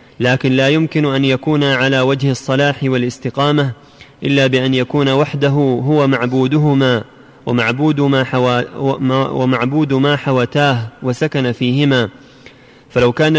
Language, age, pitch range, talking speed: Arabic, 30-49, 130-150 Hz, 110 wpm